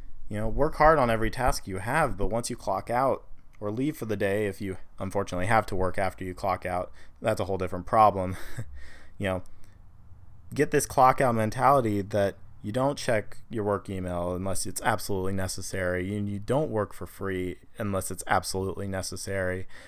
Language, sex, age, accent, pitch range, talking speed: English, male, 20-39, American, 95-115 Hz, 185 wpm